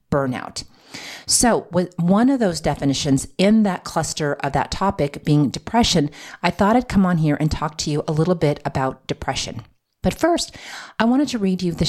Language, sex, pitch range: English, female, 150-195 Hz